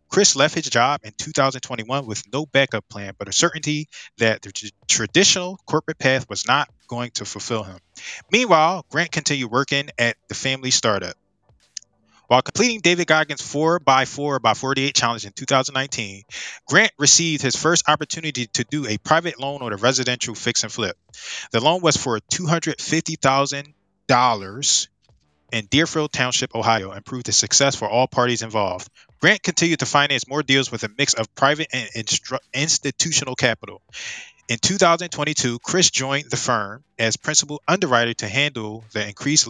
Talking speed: 160 wpm